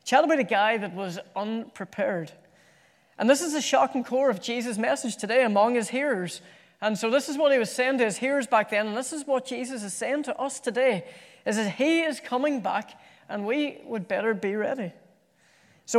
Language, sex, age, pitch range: English, female, 30-49, 205-265 Hz